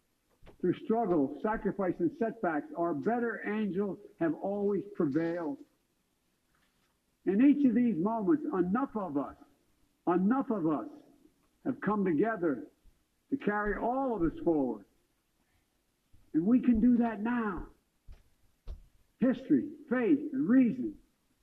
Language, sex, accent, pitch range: English, male, American, 220-305 Hz